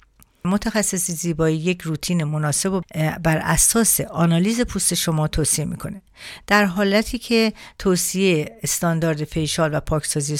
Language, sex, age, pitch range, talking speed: Persian, female, 50-69, 155-185 Hz, 120 wpm